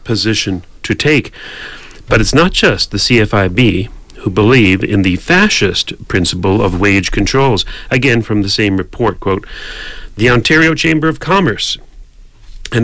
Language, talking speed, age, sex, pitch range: English, 140 wpm, 40-59, male, 95-130 Hz